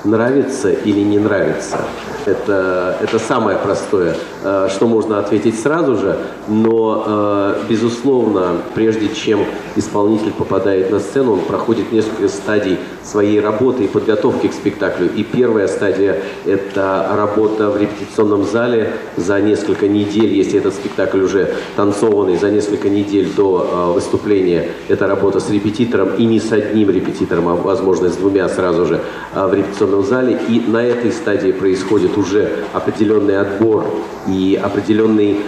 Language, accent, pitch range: Russian, native, 95-110 Hz